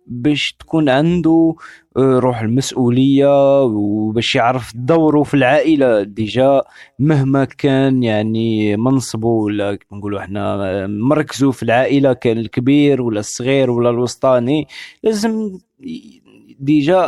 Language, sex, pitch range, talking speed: Arabic, male, 110-150 Hz, 95 wpm